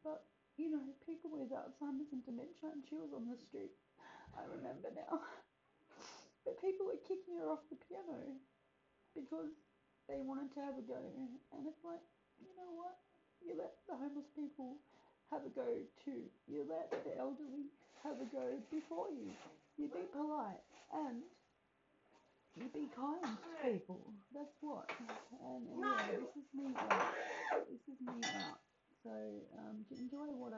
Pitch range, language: 195-290 Hz, English